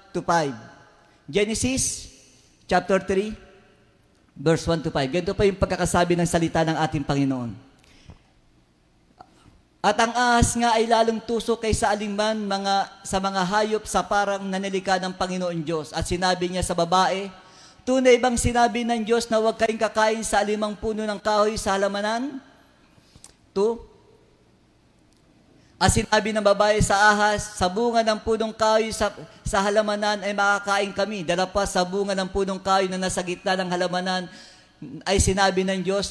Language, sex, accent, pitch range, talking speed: Filipino, female, native, 175-210 Hz, 150 wpm